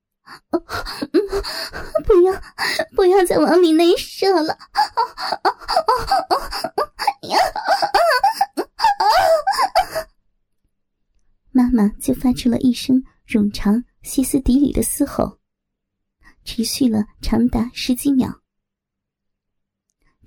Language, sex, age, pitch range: Chinese, male, 20-39, 235-280 Hz